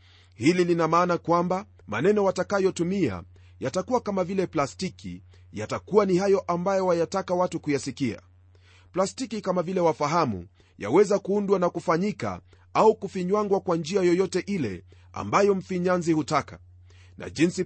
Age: 40-59